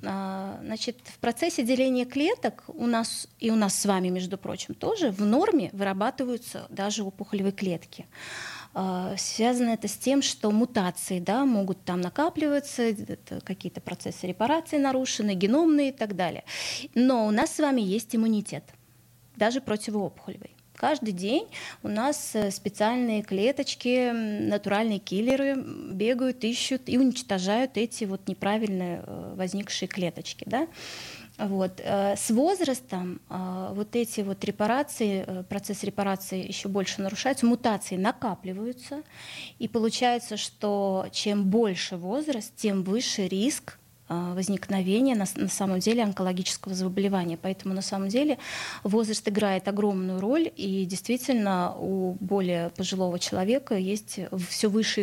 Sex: female